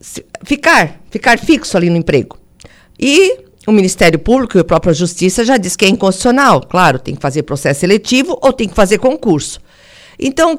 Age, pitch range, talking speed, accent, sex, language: 50-69, 185-270 Hz, 180 wpm, Brazilian, female, Portuguese